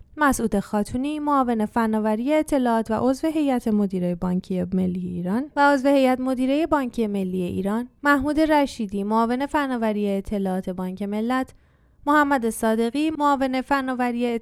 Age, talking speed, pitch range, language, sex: 20-39, 115 wpm, 205-270 Hz, Persian, female